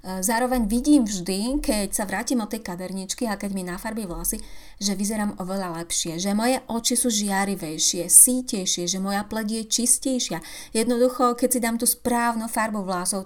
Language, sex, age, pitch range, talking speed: Slovak, female, 30-49, 180-230 Hz, 170 wpm